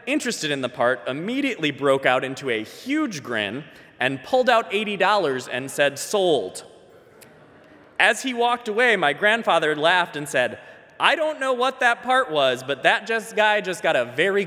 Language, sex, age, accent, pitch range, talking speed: English, male, 20-39, American, 145-210 Hz, 175 wpm